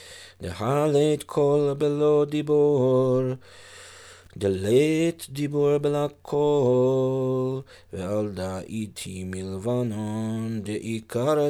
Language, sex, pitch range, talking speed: English, male, 105-135 Hz, 85 wpm